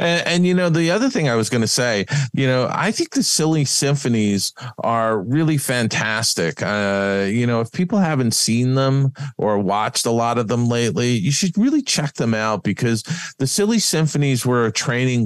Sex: male